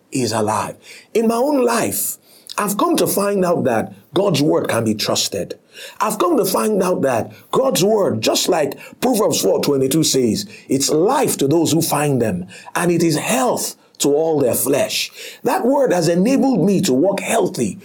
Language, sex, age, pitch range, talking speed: English, male, 50-69, 160-245 Hz, 180 wpm